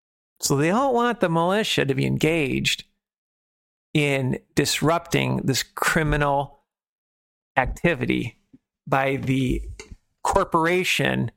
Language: English